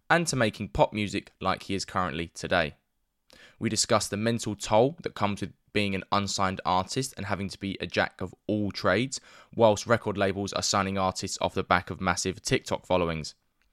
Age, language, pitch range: 10-29, English, 95-115 Hz